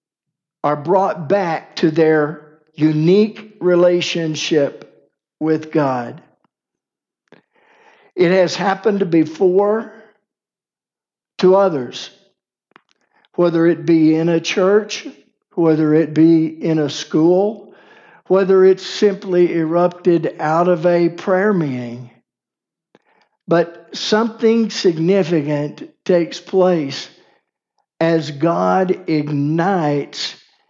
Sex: male